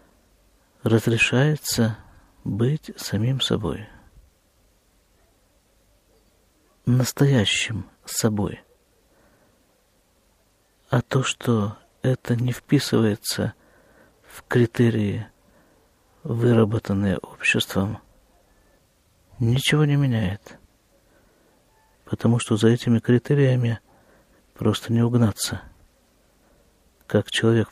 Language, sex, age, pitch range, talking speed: Russian, male, 50-69, 100-120 Hz, 65 wpm